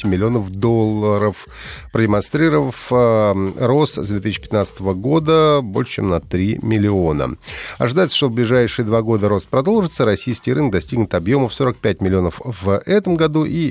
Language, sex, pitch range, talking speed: Russian, male, 100-145 Hz, 135 wpm